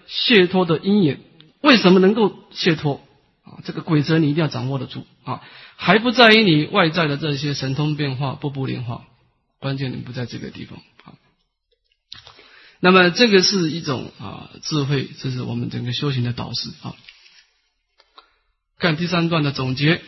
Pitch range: 145-205 Hz